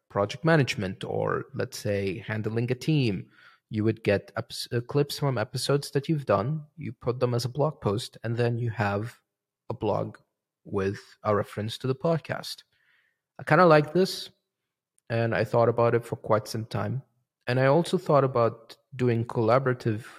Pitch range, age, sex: 110-140 Hz, 30-49, male